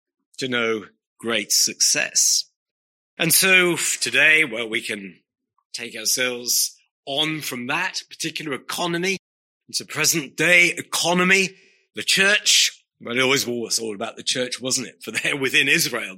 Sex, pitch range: male, 120-170 Hz